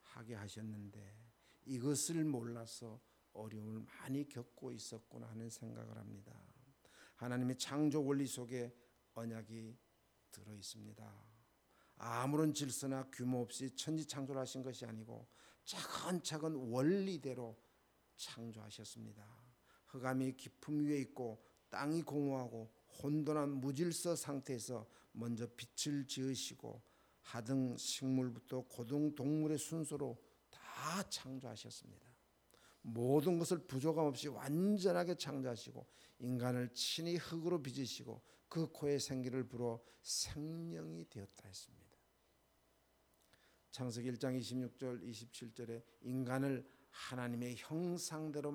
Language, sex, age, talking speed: English, male, 50-69, 90 wpm